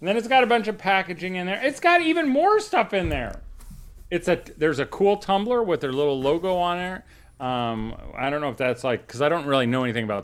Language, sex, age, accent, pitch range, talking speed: English, male, 40-59, American, 120-155 Hz, 250 wpm